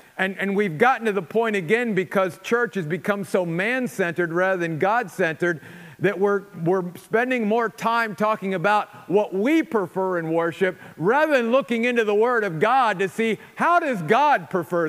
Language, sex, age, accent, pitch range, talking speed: English, male, 50-69, American, 160-200 Hz, 175 wpm